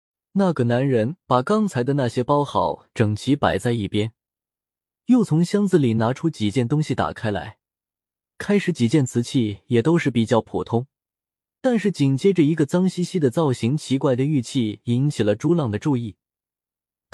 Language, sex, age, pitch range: Chinese, male, 20-39, 110-160 Hz